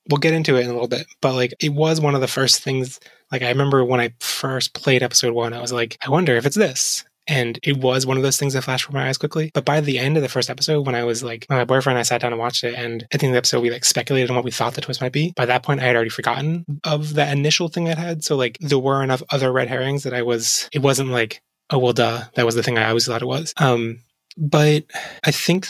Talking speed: 295 wpm